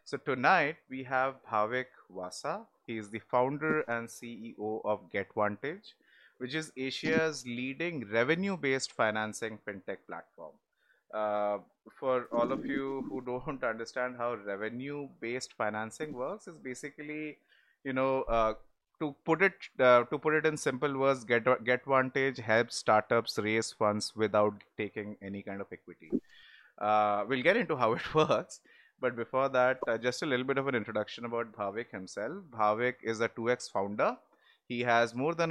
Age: 30-49